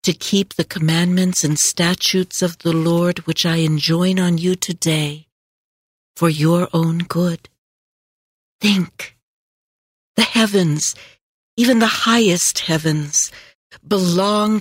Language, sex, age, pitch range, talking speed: English, female, 60-79, 165-200 Hz, 110 wpm